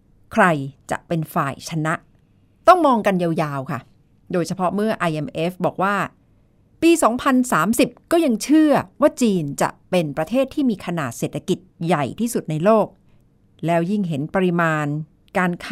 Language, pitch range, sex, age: Thai, 160-240 Hz, female, 60-79